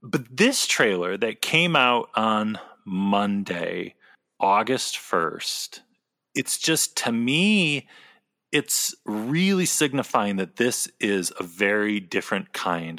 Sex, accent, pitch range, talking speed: male, American, 100-145 Hz, 110 wpm